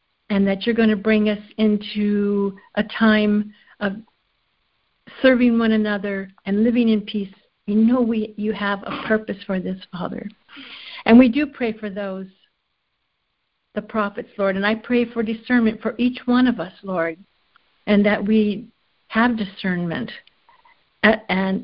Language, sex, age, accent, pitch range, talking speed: English, female, 60-79, American, 195-225 Hz, 150 wpm